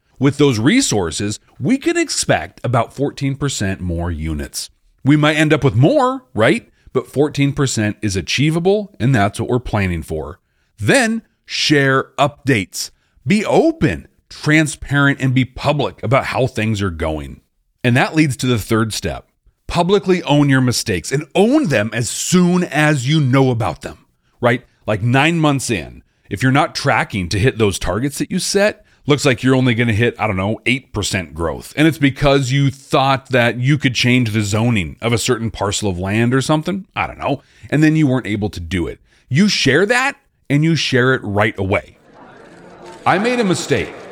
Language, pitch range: English, 105-150 Hz